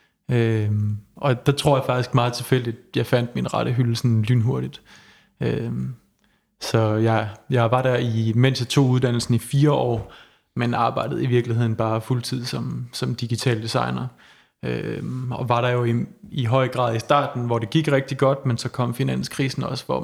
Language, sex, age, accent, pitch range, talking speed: Danish, male, 30-49, native, 115-130 Hz, 185 wpm